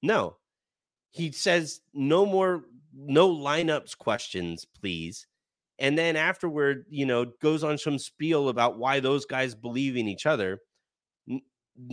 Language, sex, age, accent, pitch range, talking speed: English, male, 30-49, American, 120-155 Hz, 135 wpm